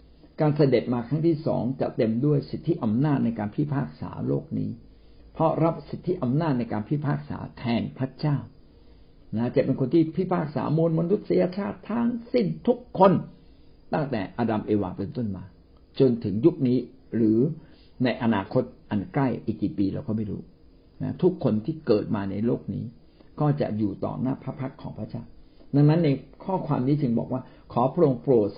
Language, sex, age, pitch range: Thai, male, 60-79, 115-155 Hz